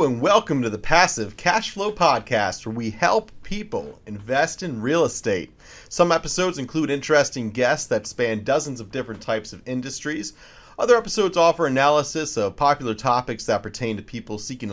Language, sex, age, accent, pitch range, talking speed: English, male, 30-49, American, 110-150 Hz, 165 wpm